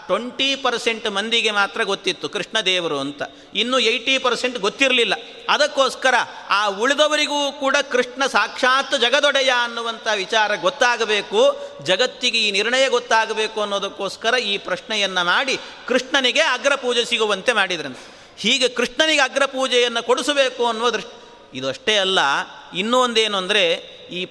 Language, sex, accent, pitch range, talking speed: Kannada, male, native, 210-260 Hz, 115 wpm